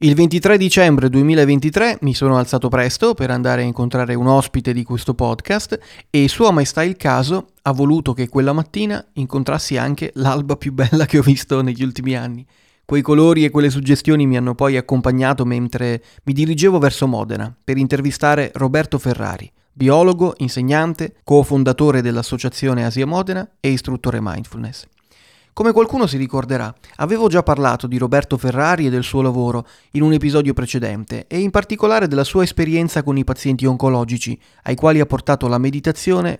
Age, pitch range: 30-49, 125-155 Hz